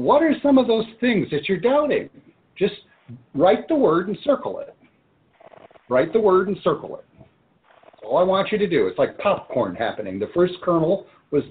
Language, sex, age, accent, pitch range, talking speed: English, male, 50-69, American, 145-220 Hz, 195 wpm